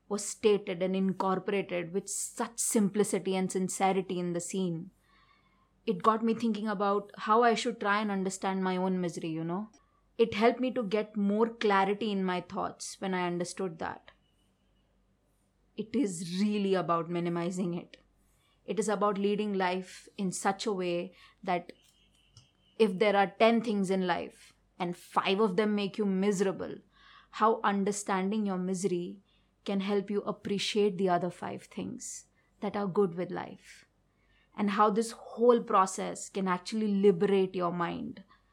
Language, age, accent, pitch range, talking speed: English, 20-39, Indian, 185-210 Hz, 155 wpm